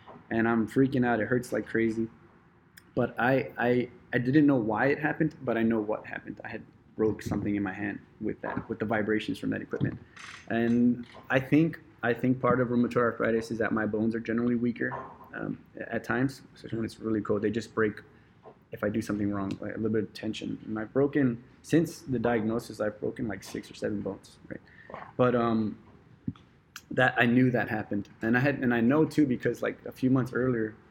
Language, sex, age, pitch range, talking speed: English, male, 20-39, 110-125 Hz, 210 wpm